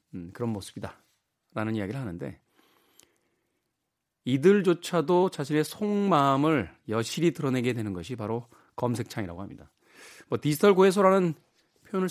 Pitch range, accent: 135-195 Hz, native